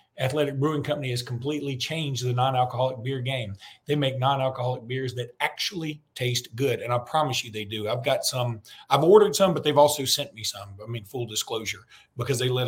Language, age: English, 40-59